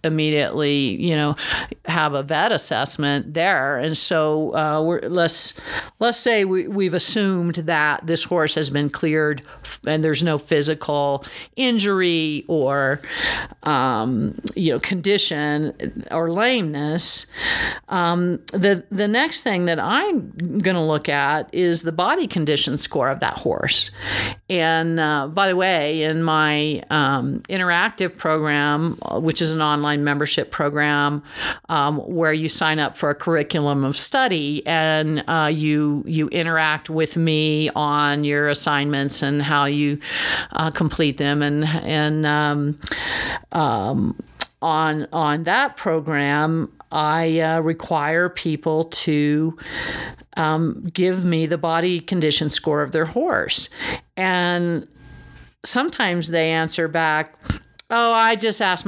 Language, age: English, 50-69